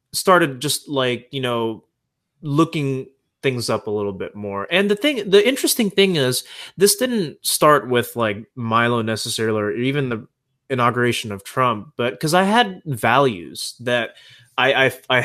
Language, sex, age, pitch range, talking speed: English, male, 20-39, 115-145 Hz, 155 wpm